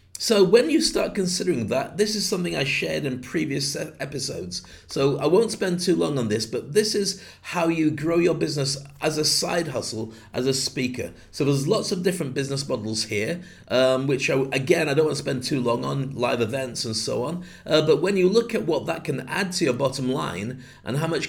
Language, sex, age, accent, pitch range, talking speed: English, male, 40-59, British, 125-170 Hz, 225 wpm